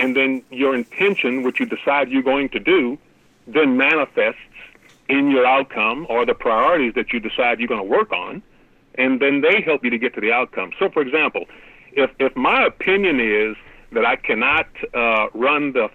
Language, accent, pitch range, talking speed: English, American, 130-195 Hz, 190 wpm